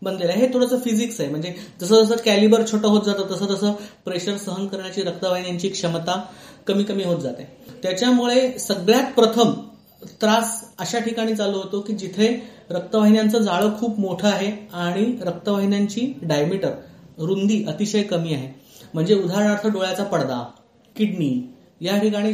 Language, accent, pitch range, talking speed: Marathi, native, 185-230 Hz, 115 wpm